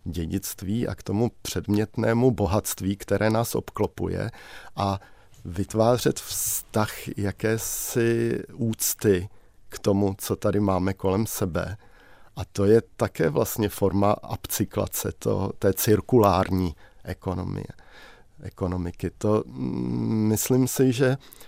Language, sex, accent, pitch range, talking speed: Czech, male, native, 95-110 Hz, 100 wpm